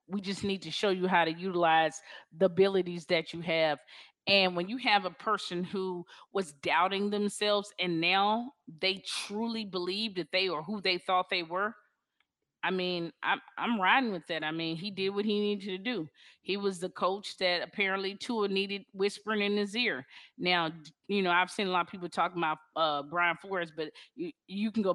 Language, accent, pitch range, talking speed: English, American, 170-200 Hz, 200 wpm